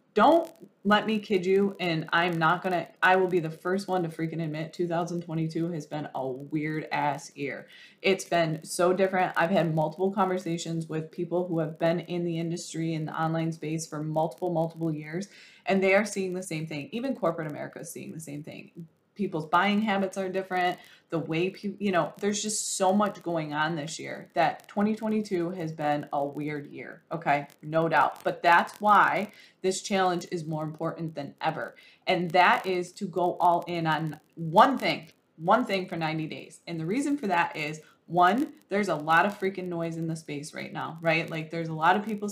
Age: 20-39